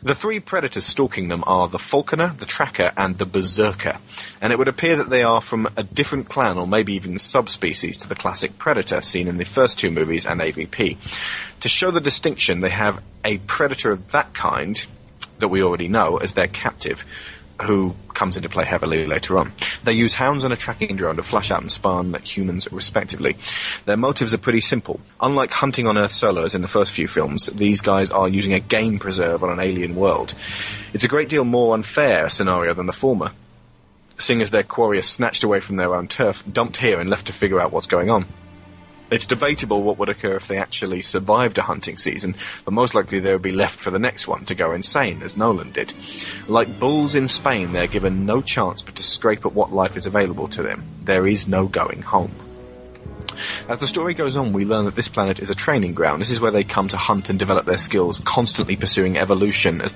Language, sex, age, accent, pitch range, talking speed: English, male, 30-49, British, 95-110 Hz, 215 wpm